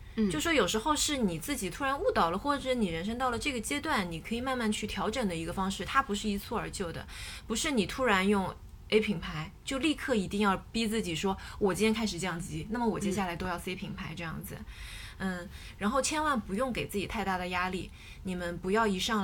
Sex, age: female, 20-39